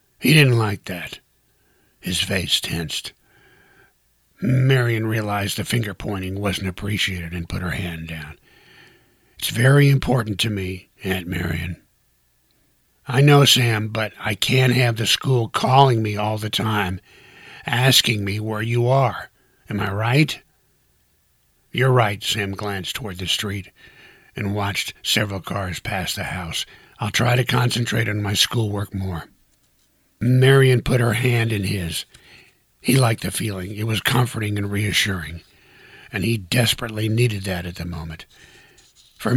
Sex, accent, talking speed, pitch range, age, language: male, American, 140 wpm, 95-120 Hz, 60-79, English